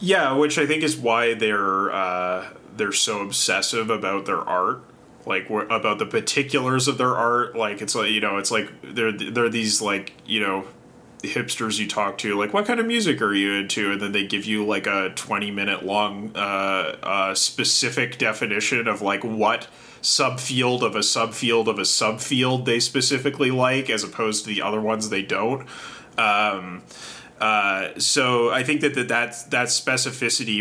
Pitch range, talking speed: 105-130 Hz, 180 wpm